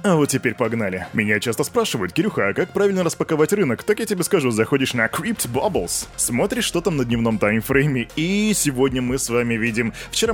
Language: Russian